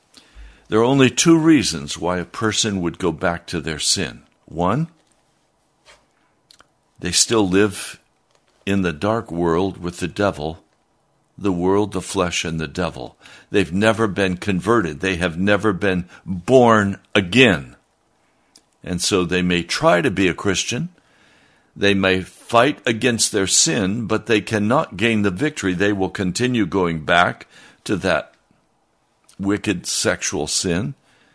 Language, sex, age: English, male, 60-79